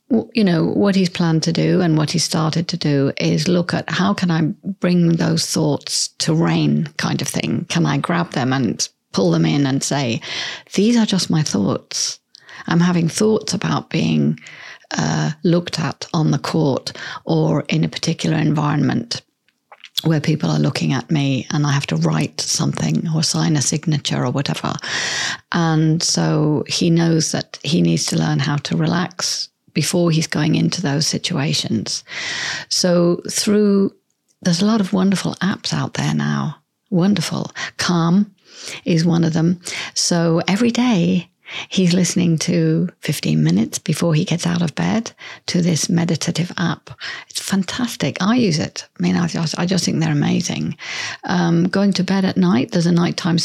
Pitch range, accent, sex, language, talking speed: 155-185 Hz, British, female, English, 170 wpm